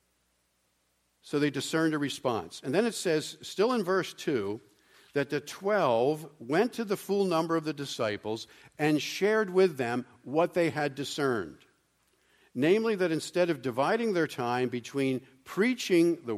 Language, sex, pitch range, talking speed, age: English, male, 120-185 Hz, 155 wpm, 50-69